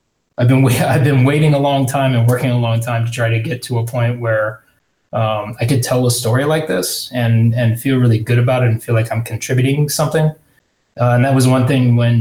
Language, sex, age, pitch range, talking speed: English, male, 20-39, 115-125 Hz, 240 wpm